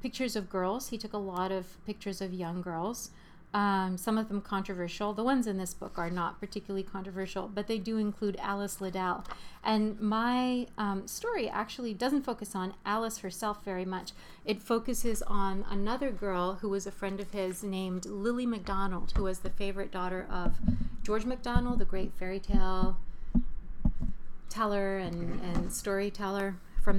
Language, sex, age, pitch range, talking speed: English, female, 30-49, 185-215 Hz, 165 wpm